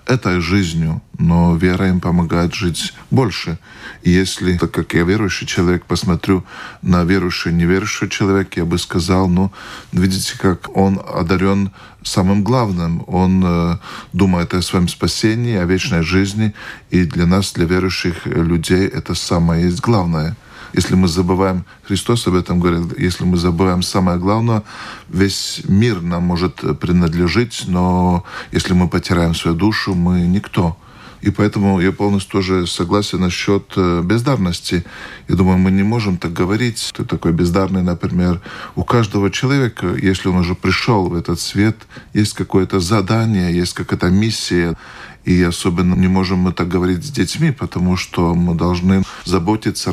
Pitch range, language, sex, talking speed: 90-100 Hz, Russian, male, 150 wpm